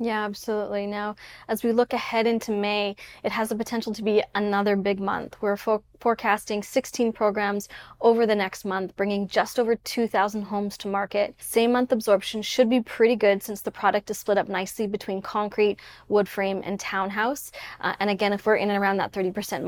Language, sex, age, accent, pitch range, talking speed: English, female, 20-39, American, 200-230 Hz, 190 wpm